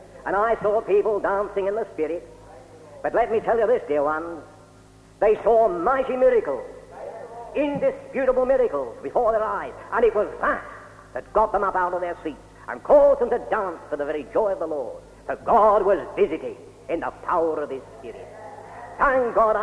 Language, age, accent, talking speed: English, 50-69, British, 185 wpm